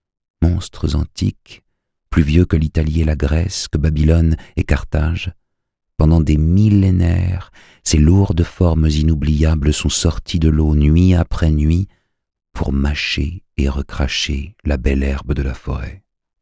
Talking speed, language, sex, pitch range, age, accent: 135 wpm, French, male, 75-90 Hz, 50-69, French